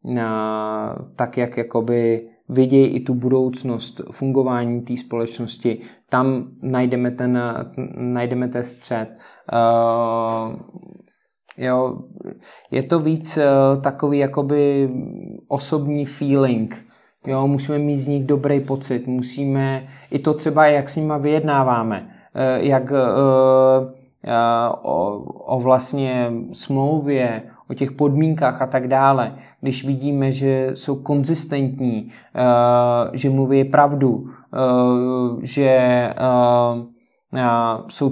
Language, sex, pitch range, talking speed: Czech, male, 125-140 Hz, 100 wpm